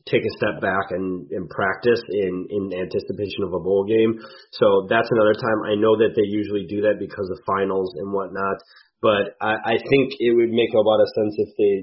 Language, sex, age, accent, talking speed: English, male, 30-49, American, 220 wpm